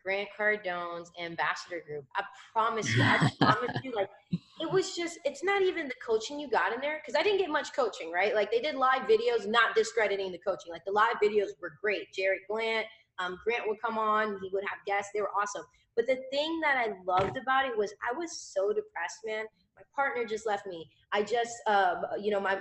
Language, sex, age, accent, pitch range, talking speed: English, female, 20-39, American, 195-275 Hz, 225 wpm